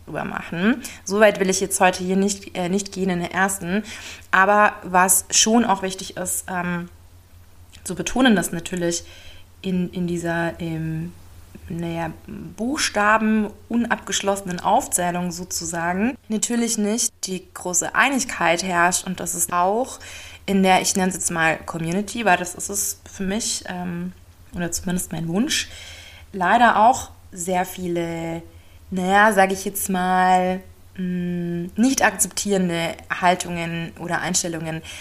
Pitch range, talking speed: 165-195 Hz, 135 wpm